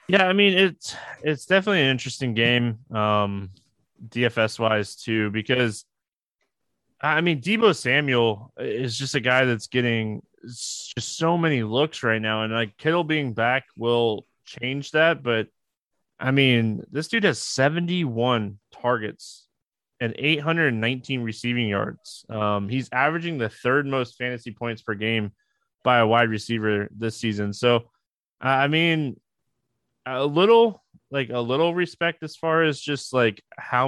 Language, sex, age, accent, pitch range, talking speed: English, male, 20-39, American, 115-155 Hz, 140 wpm